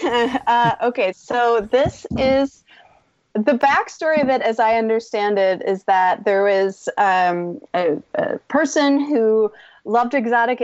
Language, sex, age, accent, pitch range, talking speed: English, female, 30-49, American, 190-235 Hz, 135 wpm